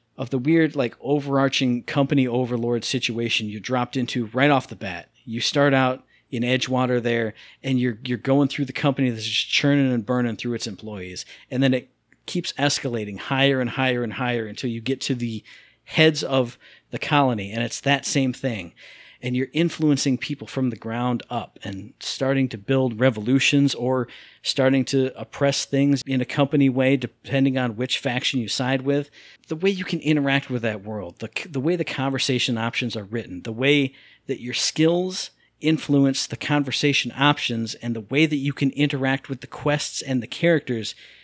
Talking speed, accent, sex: 185 wpm, American, male